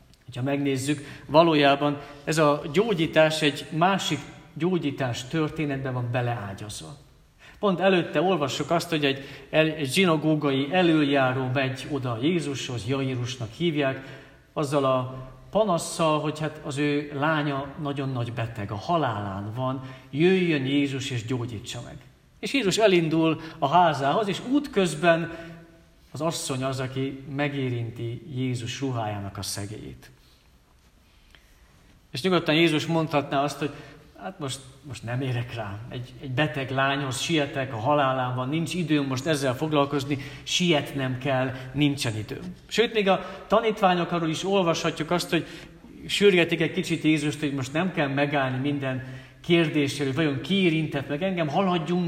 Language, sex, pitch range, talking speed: Hungarian, male, 130-170 Hz, 135 wpm